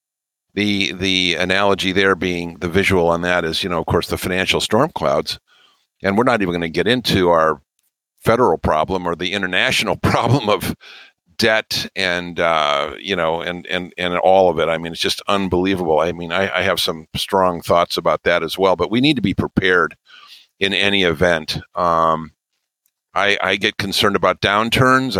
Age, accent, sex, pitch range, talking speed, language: 50-69, American, male, 90-105 Hz, 185 wpm, English